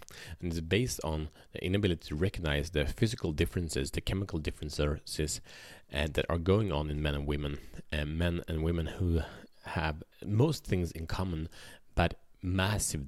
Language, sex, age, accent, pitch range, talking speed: Swedish, male, 30-49, Norwegian, 75-95 Hz, 165 wpm